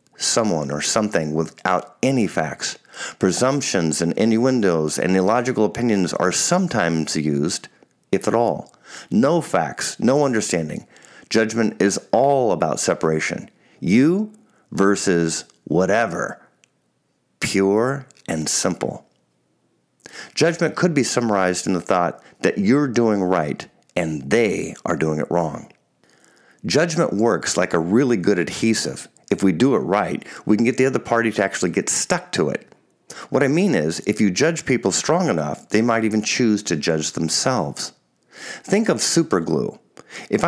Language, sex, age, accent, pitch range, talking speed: English, male, 50-69, American, 90-135 Hz, 140 wpm